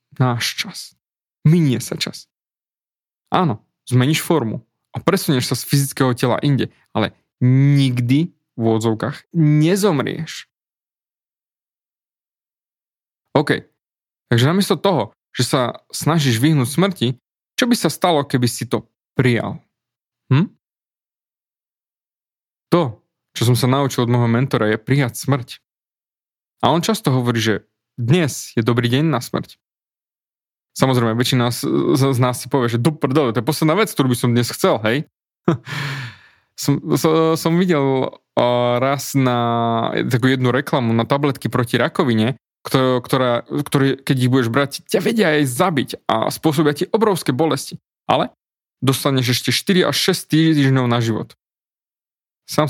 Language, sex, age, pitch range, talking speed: Slovak, male, 20-39, 120-155 Hz, 135 wpm